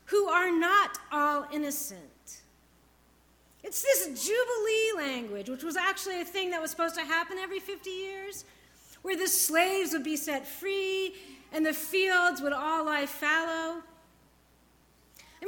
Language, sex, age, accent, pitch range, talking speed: English, female, 40-59, American, 230-355 Hz, 145 wpm